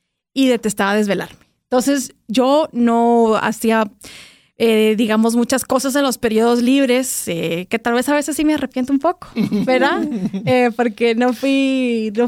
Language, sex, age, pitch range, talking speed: Spanish, female, 20-39, 215-255 Hz, 155 wpm